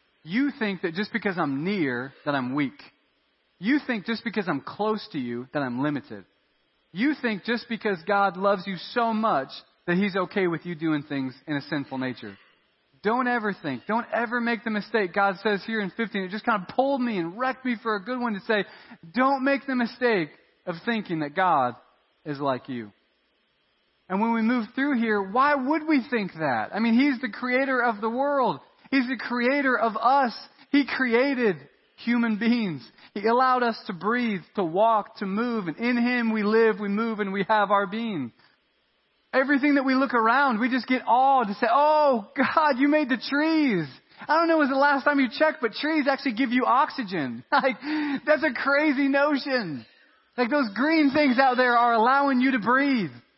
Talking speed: 200 wpm